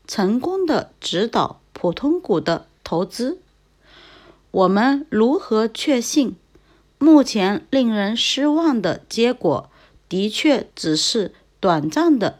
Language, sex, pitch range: Chinese, female, 205-290 Hz